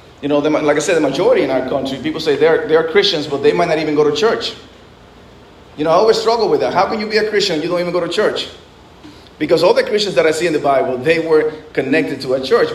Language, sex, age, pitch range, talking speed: English, male, 30-49, 150-230 Hz, 290 wpm